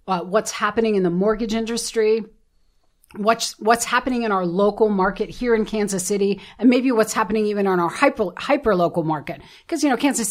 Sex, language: female, English